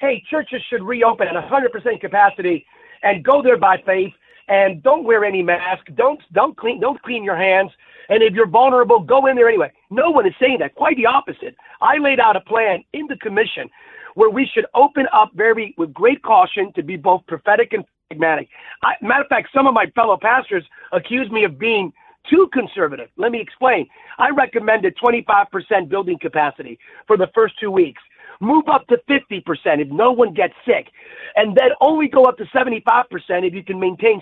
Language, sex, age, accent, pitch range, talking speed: English, male, 40-59, American, 210-270 Hz, 195 wpm